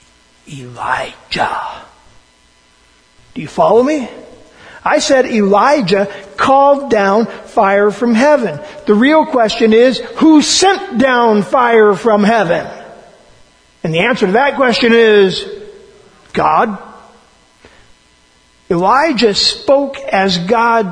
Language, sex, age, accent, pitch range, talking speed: English, male, 50-69, American, 205-255 Hz, 100 wpm